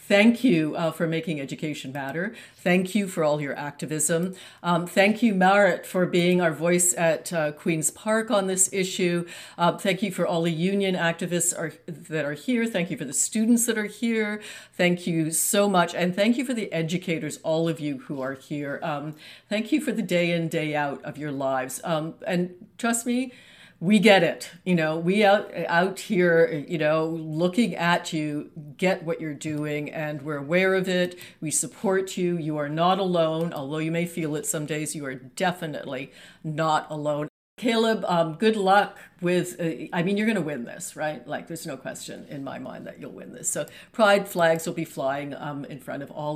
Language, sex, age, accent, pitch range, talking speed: English, female, 50-69, American, 155-190 Hz, 205 wpm